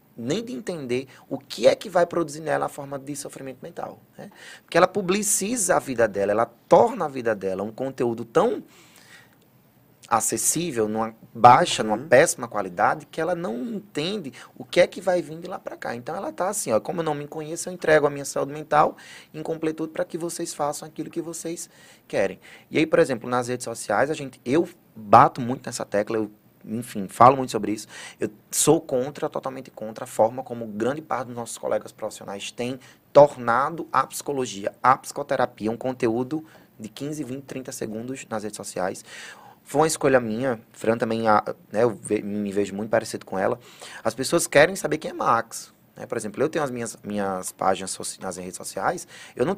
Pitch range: 110-165 Hz